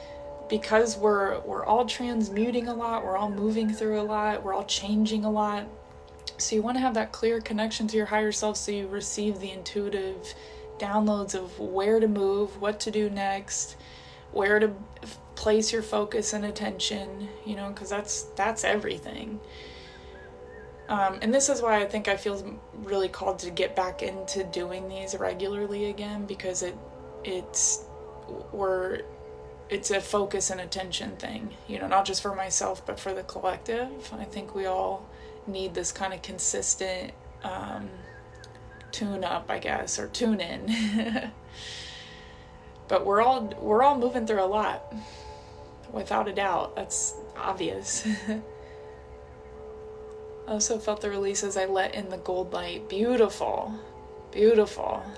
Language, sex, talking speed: English, female, 155 wpm